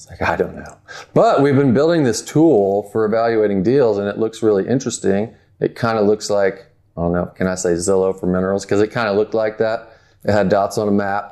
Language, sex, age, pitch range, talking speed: English, male, 30-49, 95-110 Hz, 250 wpm